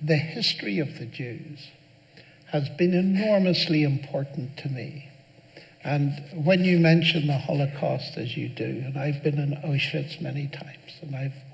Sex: male